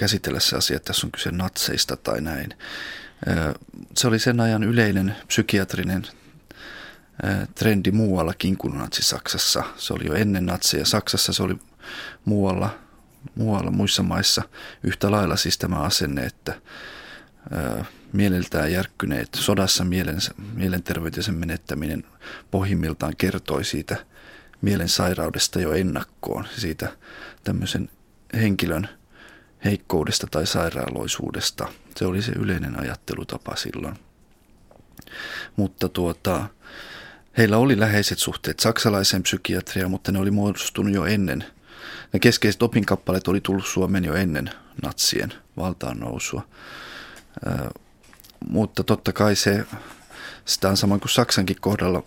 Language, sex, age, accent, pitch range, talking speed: Finnish, male, 30-49, native, 90-105 Hz, 115 wpm